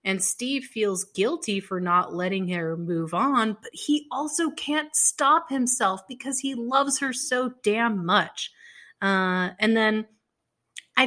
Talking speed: 145 wpm